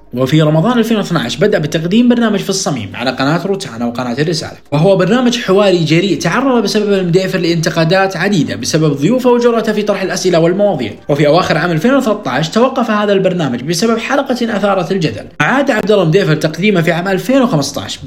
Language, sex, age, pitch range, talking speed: Arabic, male, 20-39, 165-220 Hz, 155 wpm